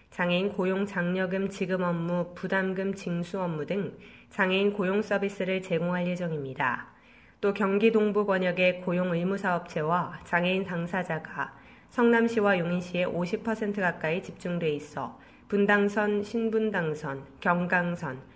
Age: 20-39